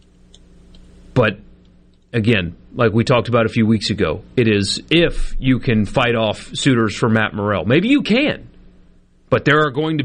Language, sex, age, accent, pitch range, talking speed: English, male, 30-49, American, 100-160 Hz, 175 wpm